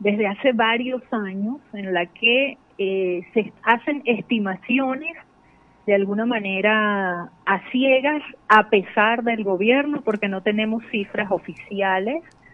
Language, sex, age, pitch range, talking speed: Spanish, female, 30-49, 185-235 Hz, 120 wpm